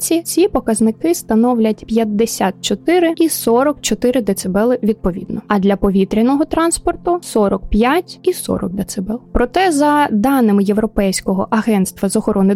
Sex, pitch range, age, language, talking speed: female, 200-255 Hz, 20-39, Ukrainian, 110 wpm